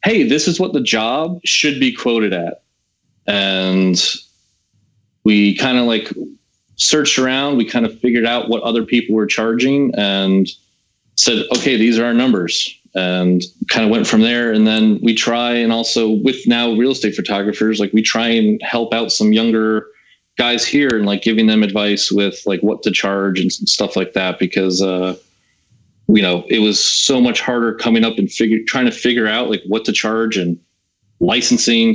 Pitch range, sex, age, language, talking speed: 100-120 Hz, male, 30-49, English, 185 wpm